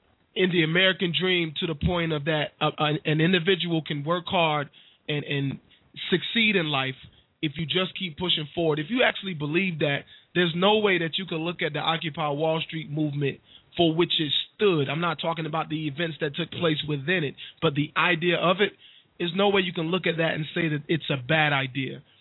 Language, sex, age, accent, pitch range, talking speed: English, male, 20-39, American, 150-170 Hz, 210 wpm